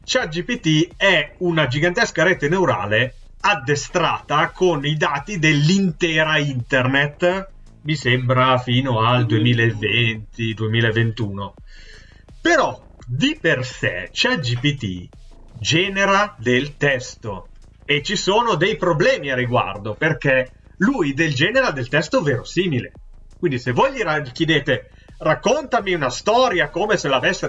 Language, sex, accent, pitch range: Italian, male, native, 125-180 Hz